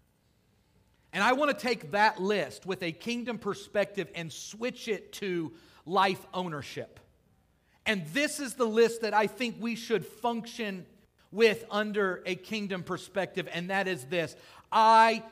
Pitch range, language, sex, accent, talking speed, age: 145-215 Hz, English, male, American, 150 wpm, 40-59